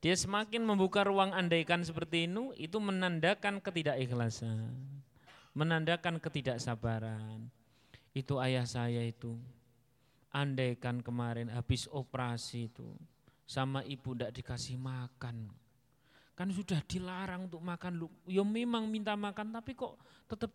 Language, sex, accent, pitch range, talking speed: Indonesian, male, native, 120-170 Hz, 110 wpm